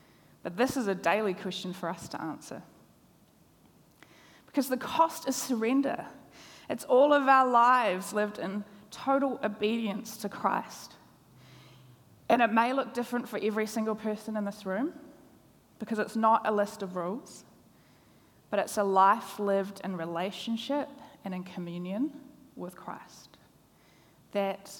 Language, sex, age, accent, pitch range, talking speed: English, female, 20-39, Australian, 190-245 Hz, 140 wpm